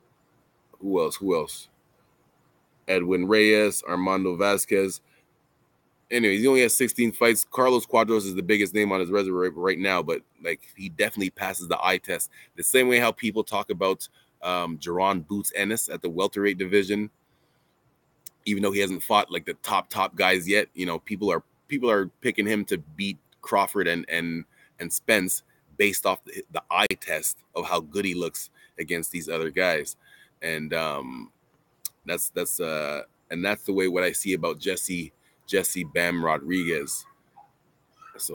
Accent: American